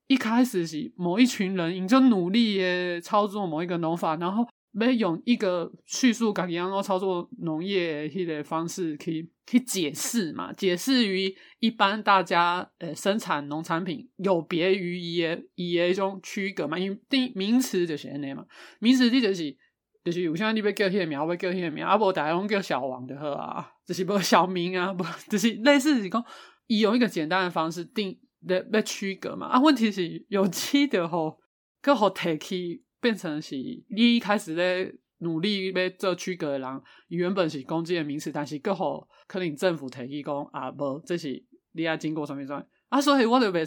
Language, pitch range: Chinese, 165-215 Hz